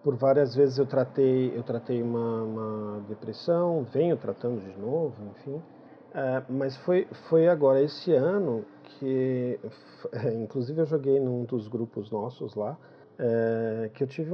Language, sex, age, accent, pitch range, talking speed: Portuguese, male, 50-69, Brazilian, 130-175 Hz, 150 wpm